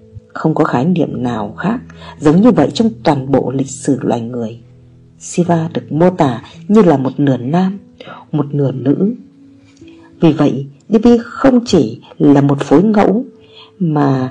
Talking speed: 160 wpm